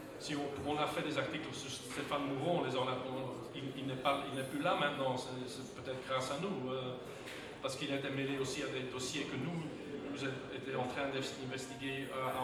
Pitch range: 130-150 Hz